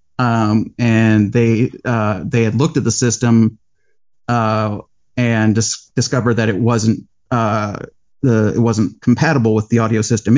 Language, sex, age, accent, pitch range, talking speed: English, male, 40-59, American, 115-135 Hz, 150 wpm